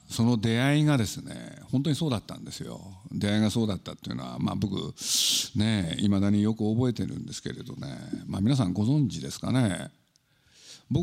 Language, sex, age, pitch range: Japanese, male, 50-69, 105-150 Hz